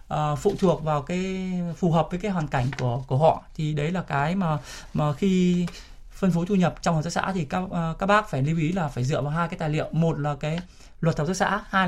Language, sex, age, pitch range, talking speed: Vietnamese, male, 20-39, 170-210 Hz, 260 wpm